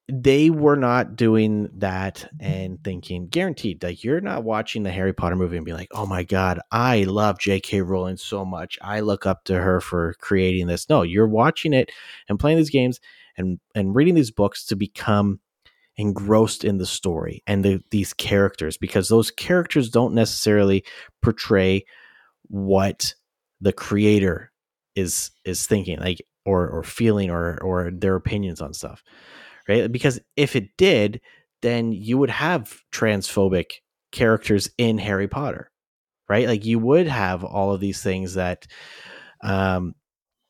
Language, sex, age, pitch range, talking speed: English, male, 30-49, 95-115 Hz, 160 wpm